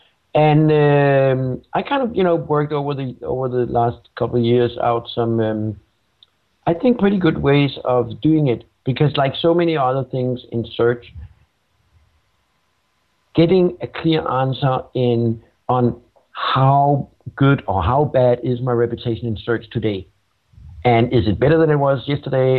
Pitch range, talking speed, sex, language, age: 115-145 Hz, 160 wpm, male, English, 60-79